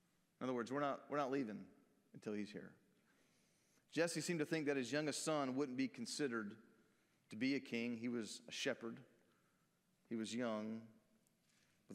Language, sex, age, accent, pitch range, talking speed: English, male, 40-59, American, 120-185 Hz, 165 wpm